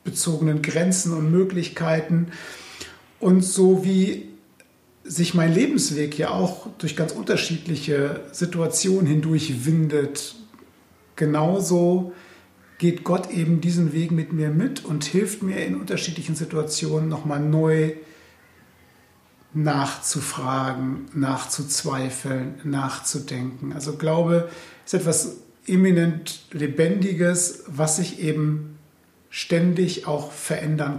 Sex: male